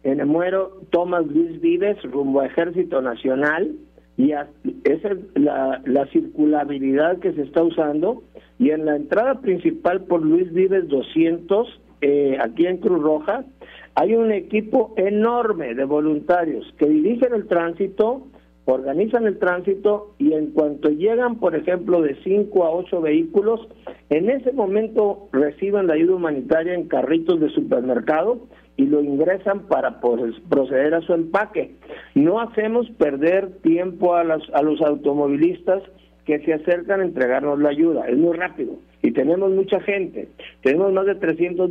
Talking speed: 150 wpm